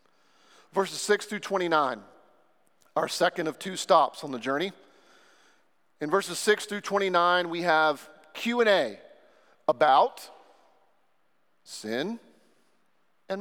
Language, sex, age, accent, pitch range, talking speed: English, male, 40-59, American, 185-225 Hz, 105 wpm